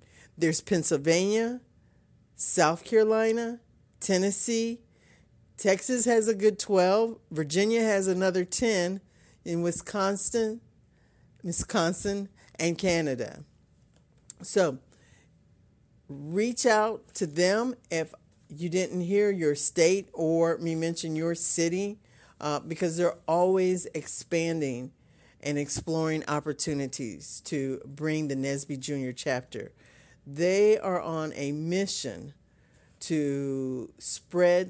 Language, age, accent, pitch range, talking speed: English, 50-69, American, 150-190 Hz, 95 wpm